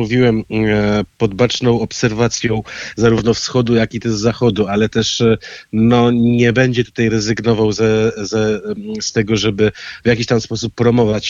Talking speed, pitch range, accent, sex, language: 145 wpm, 105-115 Hz, native, male, Polish